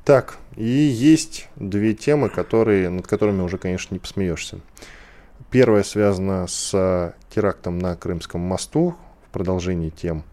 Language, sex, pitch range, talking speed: Russian, male, 90-120 Hz, 120 wpm